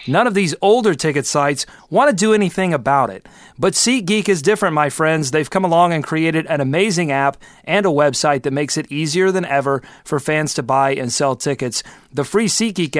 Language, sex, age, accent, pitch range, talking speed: English, male, 30-49, American, 145-185 Hz, 210 wpm